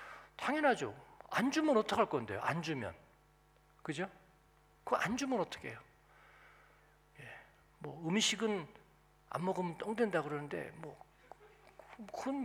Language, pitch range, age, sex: Korean, 140-225 Hz, 40-59, male